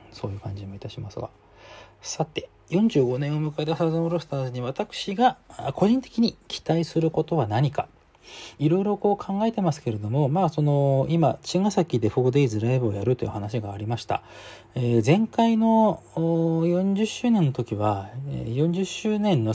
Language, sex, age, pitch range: Japanese, male, 40-59, 110-165 Hz